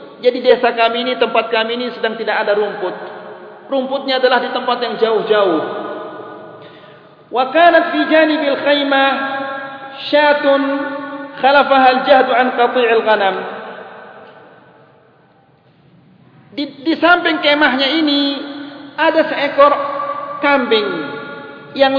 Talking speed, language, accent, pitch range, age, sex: 70 wpm, Indonesian, native, 240-290 Hz, 40-59, male